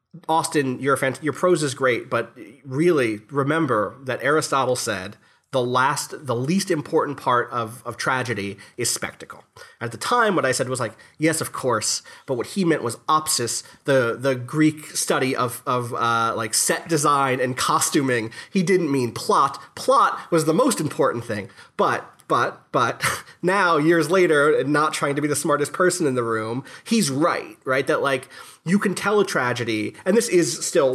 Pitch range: 125-165 Hz